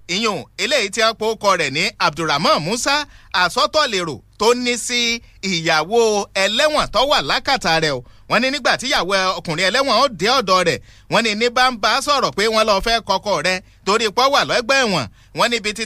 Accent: Nigerian